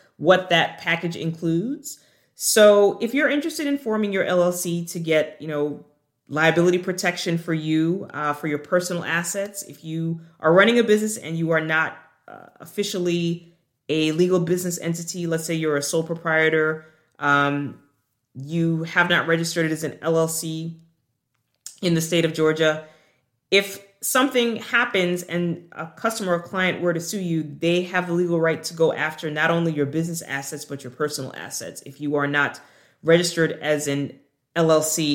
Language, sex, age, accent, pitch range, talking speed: English, female, 30-49, American, 145-175 Hz, 165 wpm